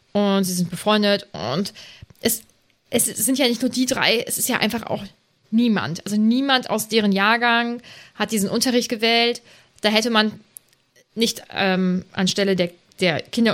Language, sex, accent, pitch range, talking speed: German, female, German, 190-235 Hz, 165 wpm